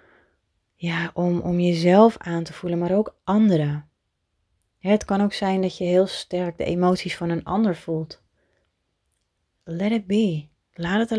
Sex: female